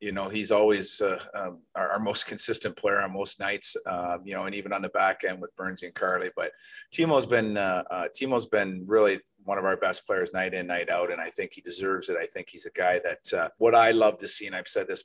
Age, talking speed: 30-49, 270 wpm